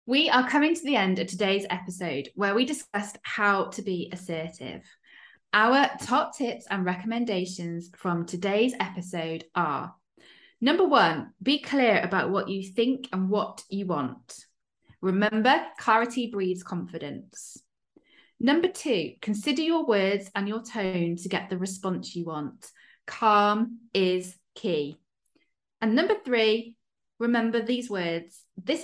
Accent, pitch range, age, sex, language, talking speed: British, 180-260 Hz, 20-39, female, English, 135 wpm